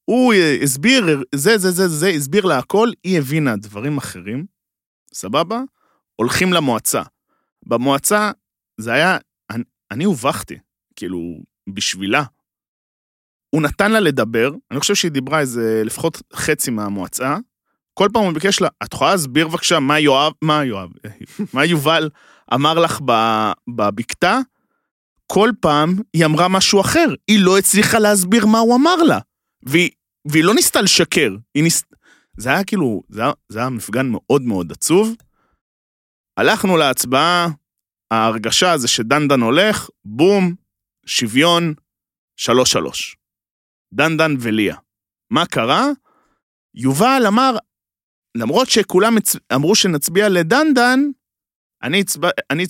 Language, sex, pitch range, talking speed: Hebrew, male, 130-210 Hz, 100 wpm